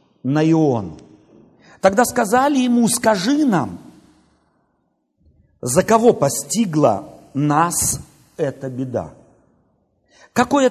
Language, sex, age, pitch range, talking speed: Russian, male, 50-69, 145-220 Hz, 80 wpm